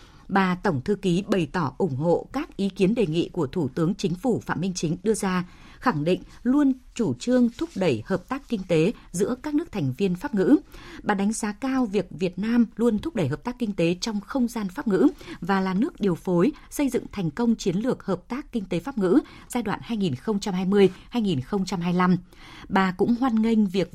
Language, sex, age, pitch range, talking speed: Vietnamese, female, 20-39, 180-240 Hz, 215 wpm